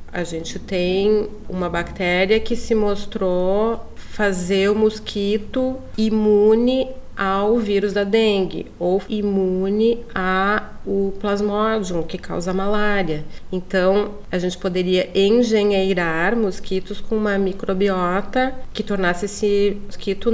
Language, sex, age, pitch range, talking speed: Portuguese, female, 30-49, 195-245 Hz, 105 wpm